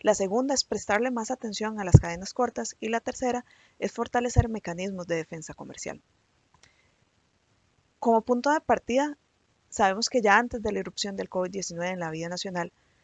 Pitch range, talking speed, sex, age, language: 175-215 Hz, 165 wpm, female, 30-49, Spanish